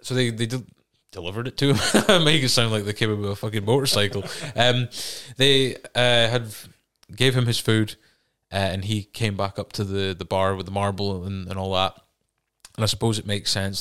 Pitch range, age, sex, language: 105-140 Hz, 20-39, male, English